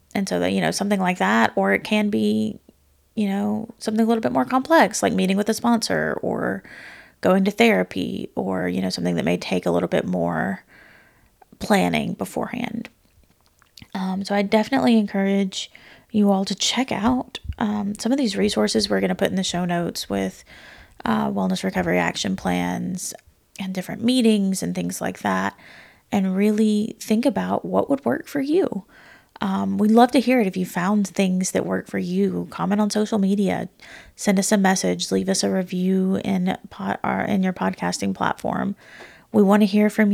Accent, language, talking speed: American, English, 185 wpm